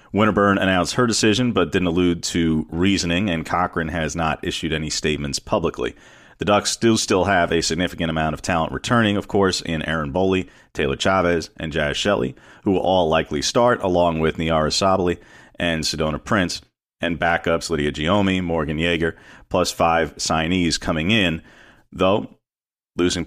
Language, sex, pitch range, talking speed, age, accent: English, male, 80-100 Hz, 160 wpm, 40-59, American